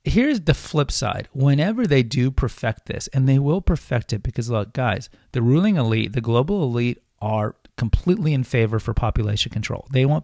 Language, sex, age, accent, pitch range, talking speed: English, male, 30-49, American, 115-135 Hz, 190 wpm